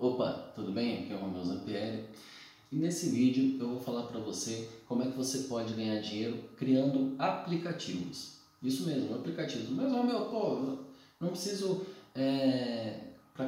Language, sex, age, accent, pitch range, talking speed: Portuguese, male, 20-39, Brazilian, 125-160 Hz, 160 wpm